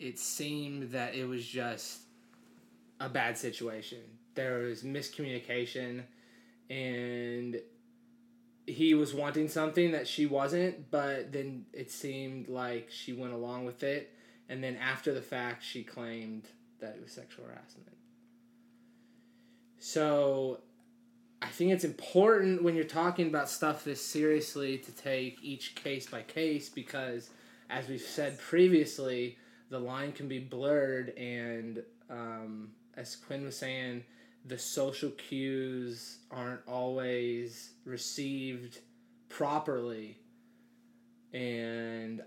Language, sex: English, male